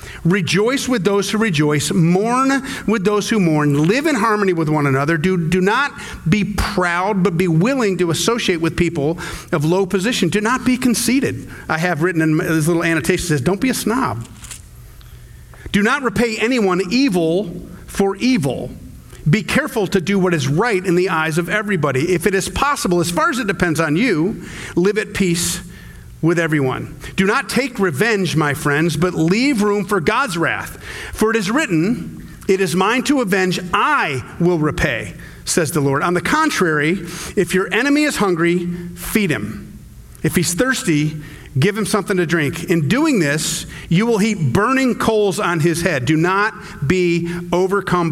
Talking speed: 180 wpm